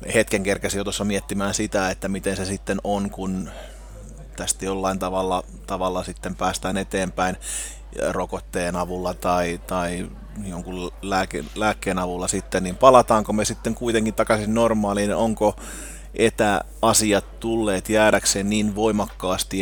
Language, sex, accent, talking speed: Finnish, male, native, 120 wpm